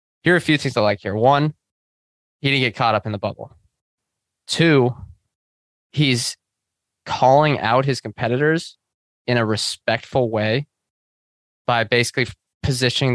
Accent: American